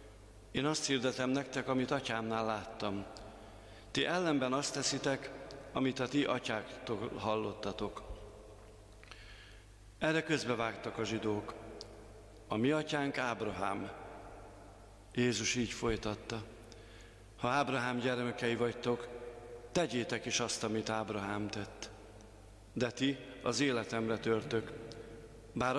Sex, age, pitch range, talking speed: male, 50-69, 105-130 Hz, 100 wpm